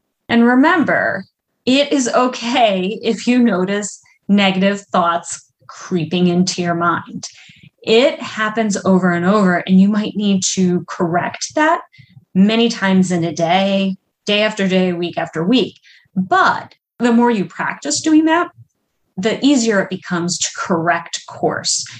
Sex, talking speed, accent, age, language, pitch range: female, 140 wpm, American, 30-49, English, 180-245 Hz